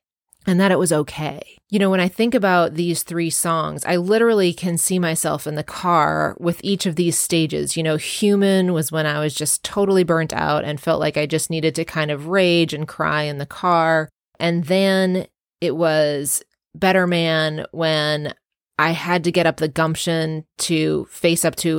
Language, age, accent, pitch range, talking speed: English, 30-49, American, 150-175 Hz, 195 wpm